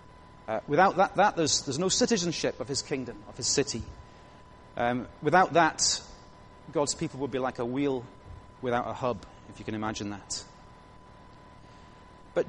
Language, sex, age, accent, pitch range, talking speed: English, male, 30-49, British, 110-155 Hz, 160 wpm